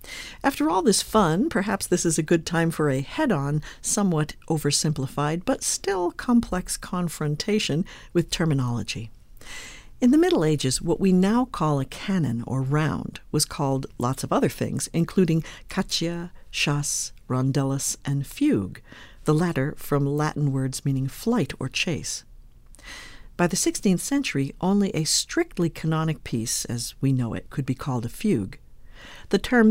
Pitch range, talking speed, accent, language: 140-190 Hz, 150 wpm, American, English